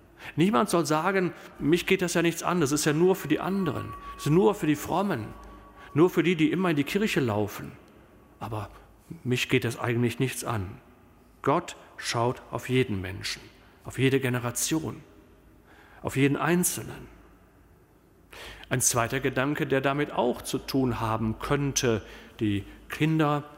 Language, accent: German, German